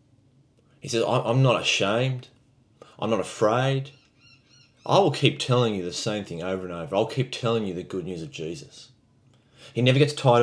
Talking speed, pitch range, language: 185 wpm, 110-135 Hz, English